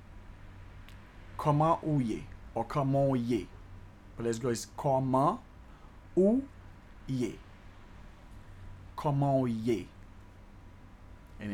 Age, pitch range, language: 30-49, 95-145 Hz, English